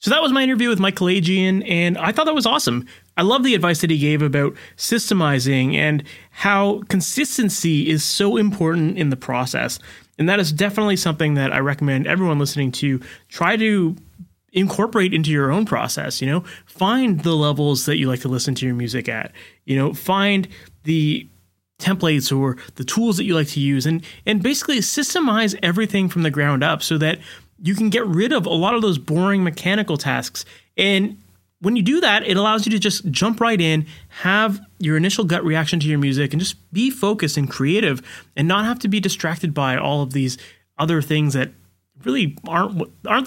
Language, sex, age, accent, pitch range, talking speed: English, male, 30-49, American, 145-200 Hz, 200 wpm